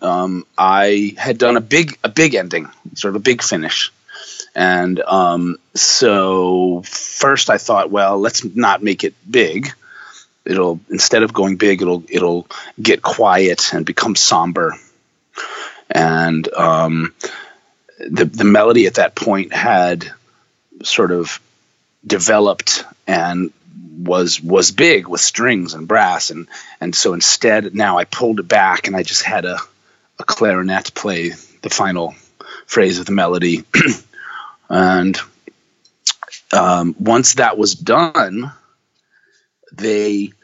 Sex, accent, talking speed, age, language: male, American, 130 wpm, 30-49, English